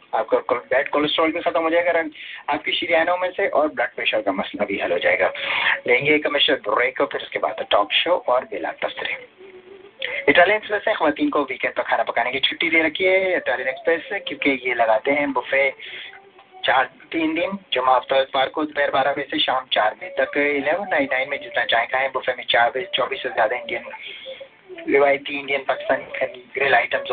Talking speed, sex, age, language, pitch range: 115 wpm, male, 30-49, English, 135-190 Hz